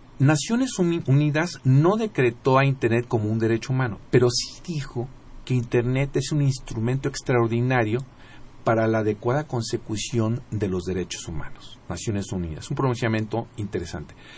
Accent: Mexican